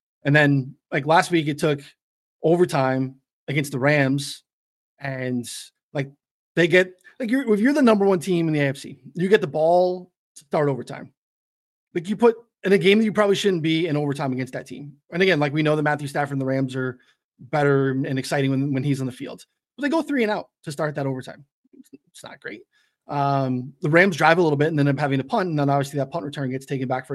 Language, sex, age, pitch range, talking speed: English, male, 20-39, 135-170 Hz, 240 wpm